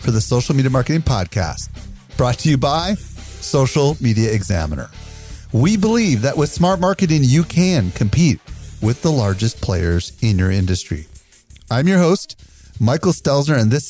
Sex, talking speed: male, 155 wpm